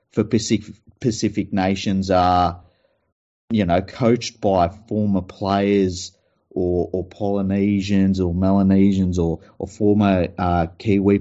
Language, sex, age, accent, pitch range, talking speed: English, male, 30-49, Australian, 95-115 Hz, 110 wpm